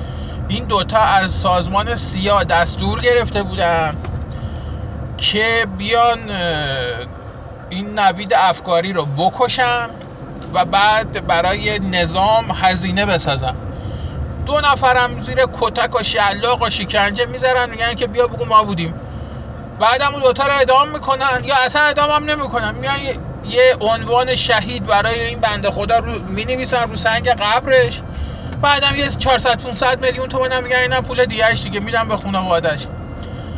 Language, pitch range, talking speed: Persian, 195-255 Hz, 130 wpm